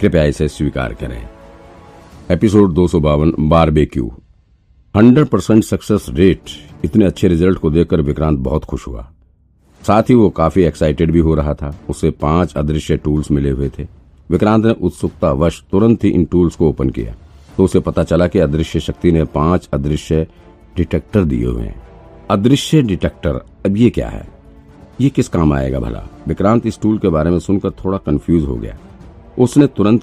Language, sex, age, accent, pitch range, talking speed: Hindi, male, 50-69, native, 75-100 Hz, 100 wpm